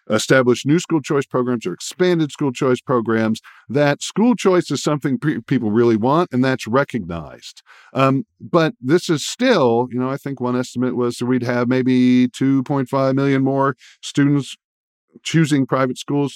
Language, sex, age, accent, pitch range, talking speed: English, male, 50-69, American, 120-150 Hz, 160 wpm